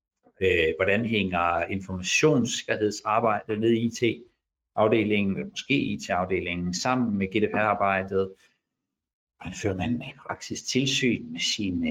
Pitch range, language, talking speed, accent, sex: 95-125 Hz, Danish, 95 wpm, native, male